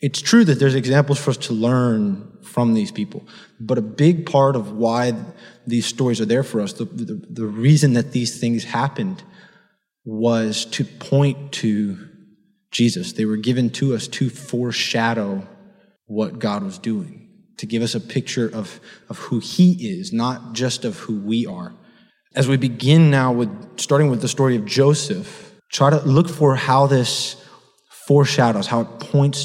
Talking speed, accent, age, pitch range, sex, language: 175 wpm, American, 20-39, 120-150 Hz, male, English